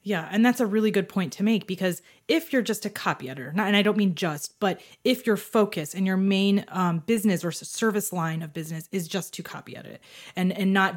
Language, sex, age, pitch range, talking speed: English, female, 20-39, 175-220 Hz, 235 wpm